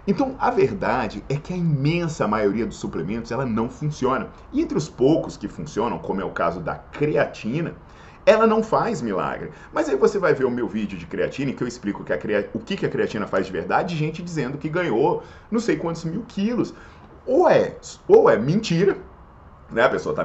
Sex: male